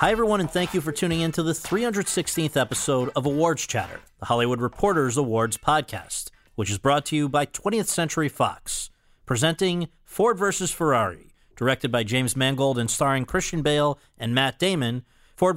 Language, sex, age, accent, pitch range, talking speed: English, male, 40-59, American, 120-165 Hz, 175 wpm